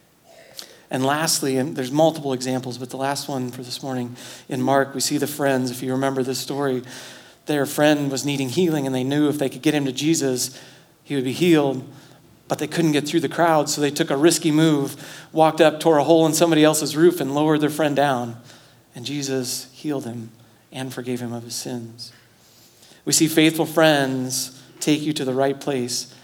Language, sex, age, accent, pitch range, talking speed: English, male, 40-59, American, 125-145 Hz, 205 wpm